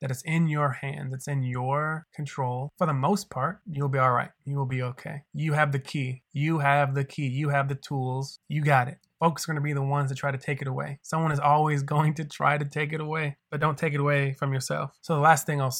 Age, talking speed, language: 20-39, 265 wpm, English